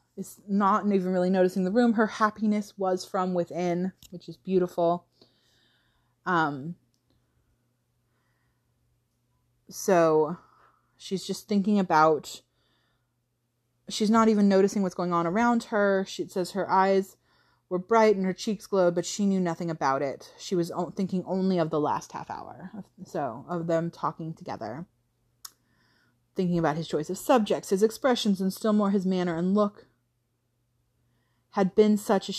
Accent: American